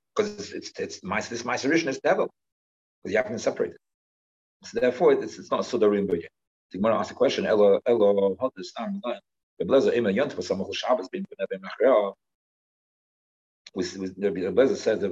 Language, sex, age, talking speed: English, male, 50-69, 185 wpm